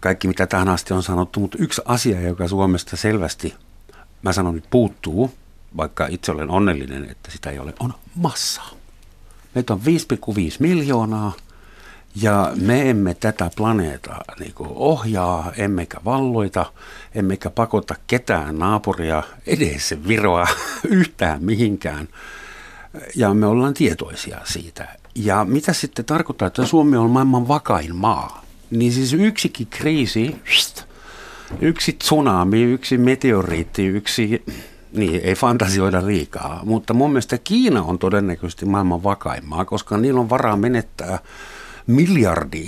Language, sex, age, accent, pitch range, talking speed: Finnish, male, 60-79, native, 90-125 Hz, 125 wpm